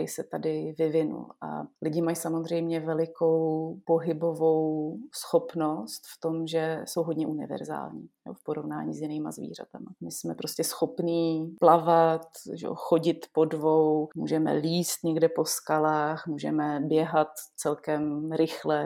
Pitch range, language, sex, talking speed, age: 155-165 Hz, Slovak, female, 130 wpm, 30-49